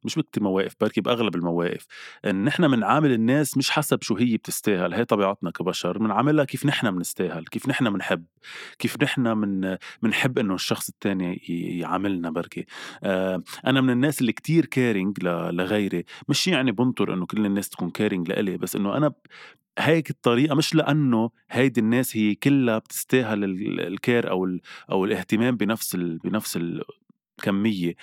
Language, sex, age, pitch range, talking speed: Arabic, male, 20-39, 95-130 Hz, 155 wpm